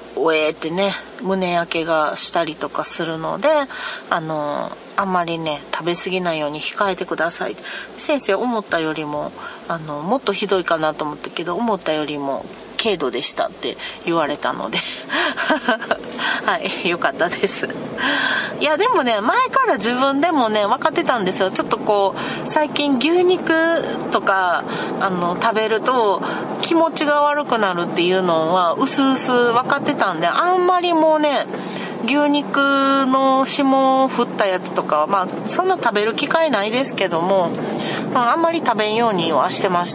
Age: 40-59